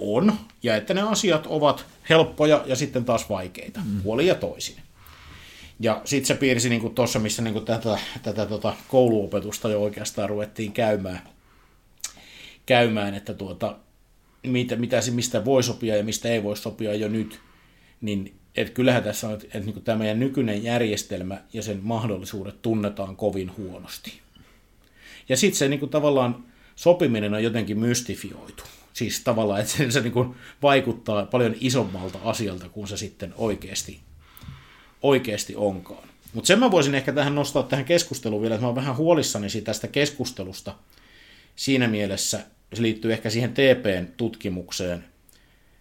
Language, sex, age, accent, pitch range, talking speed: Finnish, male, 50-69, native, 100-125 Hz, 145 wpm